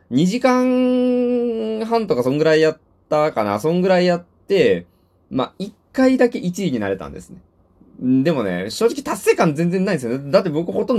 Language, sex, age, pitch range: Japanese, male, 20-39, 105-170 Hz